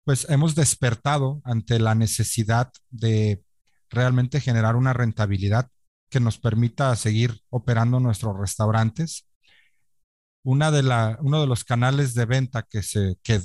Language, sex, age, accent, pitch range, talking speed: Spanish, male, 40-59, Mexican, 110-135 Hz, 135 wpm